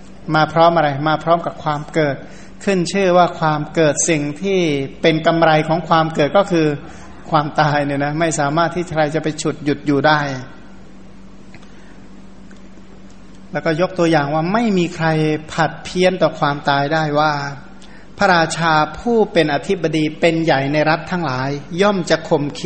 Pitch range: 150-170 Hz